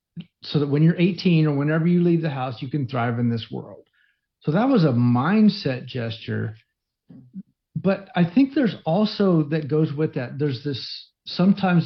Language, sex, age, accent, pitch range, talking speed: English, male, 50-69, American, 135-180 Hz, 175 wpm